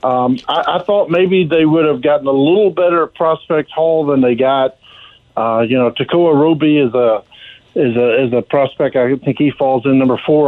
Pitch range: 135-165 Hz